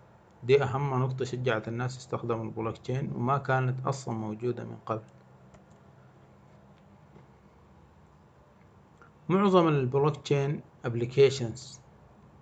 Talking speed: 85 wpm